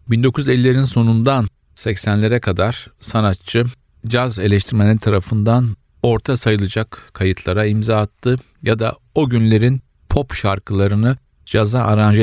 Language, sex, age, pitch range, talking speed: Turkish, male, 40-59, 95-115 Hz, 105 wpm